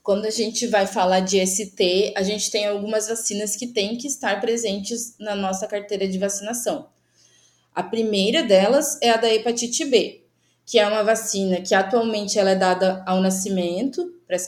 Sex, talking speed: female, 175 wpm